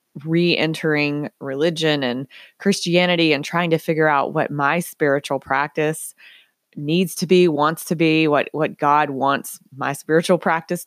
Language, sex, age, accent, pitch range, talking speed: English, female, 20-39, American, 150-175 Hz, 145 wpm